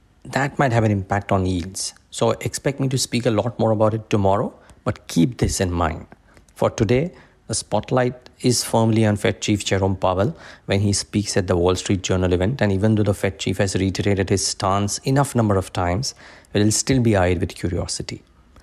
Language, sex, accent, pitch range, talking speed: English, male, Indian, 95-115 Hz, 205 wpm